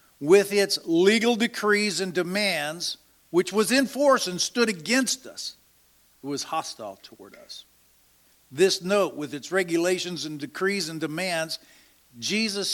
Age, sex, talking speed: 50-69, male, 135 wpm